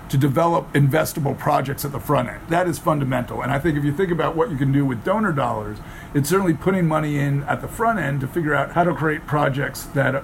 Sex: male